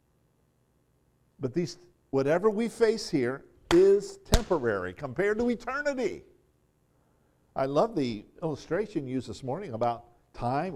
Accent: American